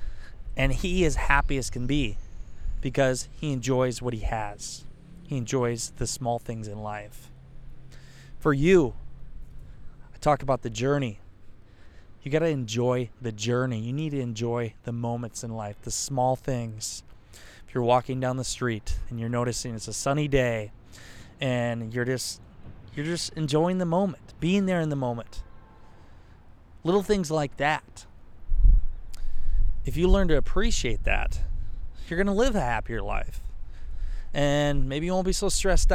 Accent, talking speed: American, 155 wpm